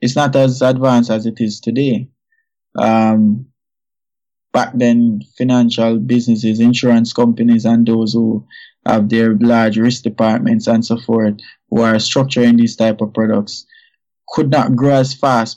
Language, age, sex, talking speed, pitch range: English, 20-39, male, 145 wpm, 115-130 Hz